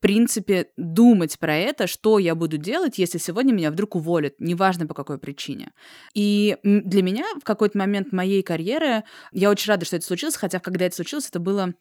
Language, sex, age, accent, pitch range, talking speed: Russian, female, 20-39, native, 170-220 Hz, 190 wpm